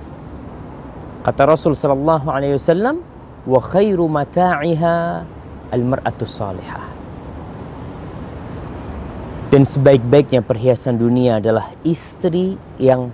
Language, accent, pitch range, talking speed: English, Indonesian, 125-185 Hz, 50 wpm